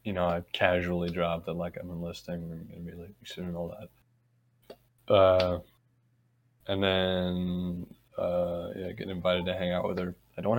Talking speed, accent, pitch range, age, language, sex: 180 wpm, American, 90-120 Hz, 20-39, English, male